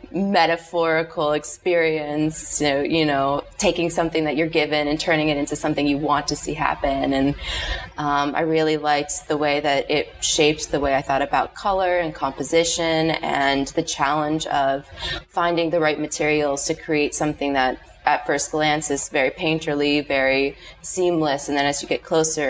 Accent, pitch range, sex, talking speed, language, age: American, 140-160 Hz, female, 170 wpm, English, 20-39